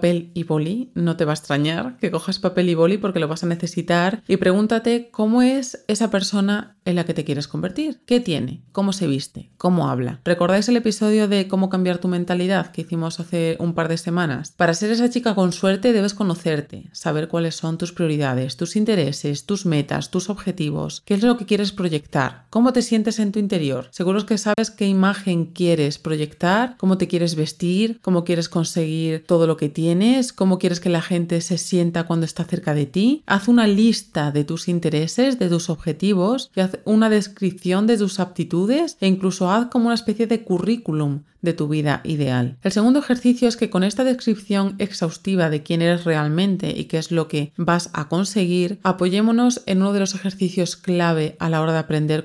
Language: Spanish